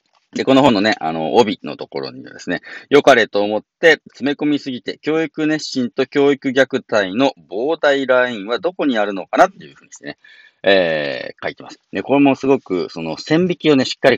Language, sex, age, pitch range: Japanese, male, 40-59, 100-150 Hz